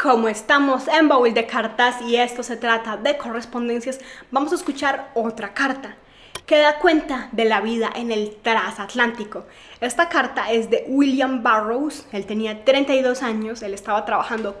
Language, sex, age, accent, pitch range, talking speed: Spanish, female, 20-39, Colombian, 225-275 Hz, 160 wpm